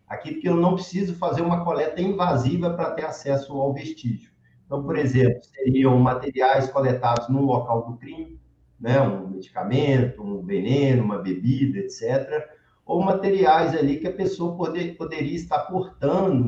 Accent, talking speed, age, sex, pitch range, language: Brazilian, 150 wpm, 50-69, male, 125-150 Hz, Portuguese